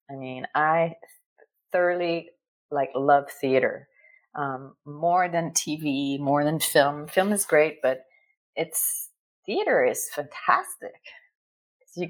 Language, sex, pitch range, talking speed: English, female, 160-220 Hz, 115 wpm